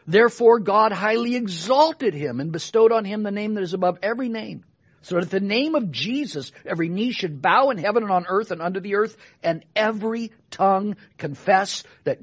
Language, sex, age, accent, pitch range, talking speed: English, male, 60-79, American, 170-230 Hz, 200 wpm